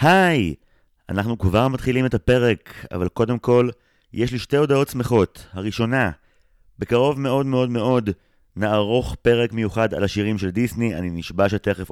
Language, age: Hebrew, 30-49